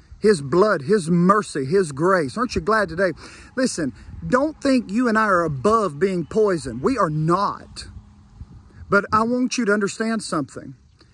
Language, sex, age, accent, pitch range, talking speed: English, male, 40-59, American, 175-235 Hz, 160 wpm